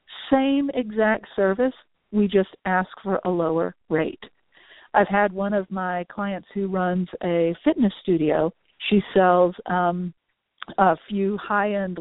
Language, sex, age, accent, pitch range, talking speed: English, female, 50-69, American, 175-210 Hz, 140 wpm